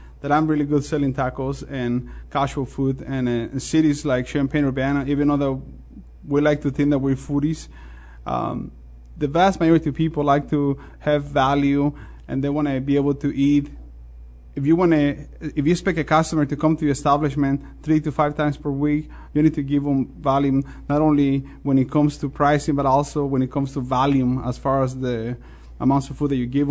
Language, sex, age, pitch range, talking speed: English, male, 20-39, 135-150 Hz, 205 wpm